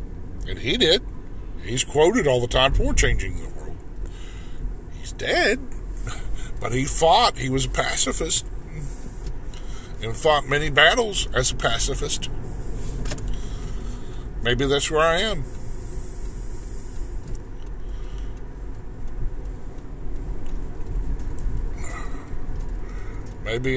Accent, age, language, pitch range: American, 50-69, English, 95-140 Hz